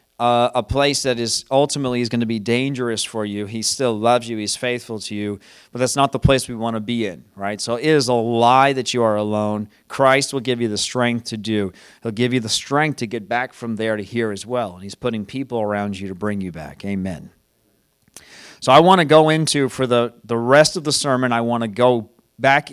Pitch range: 110-135 Hz